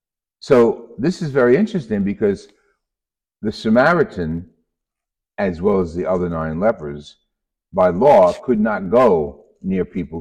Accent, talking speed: American, 130 wpm